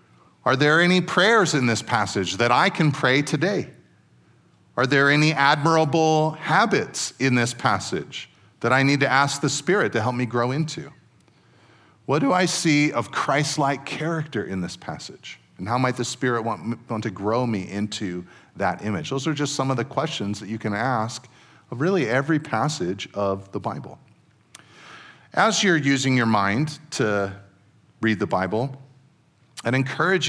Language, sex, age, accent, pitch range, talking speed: English, male, 40-59, American, 110-140 Hz, 165 wpm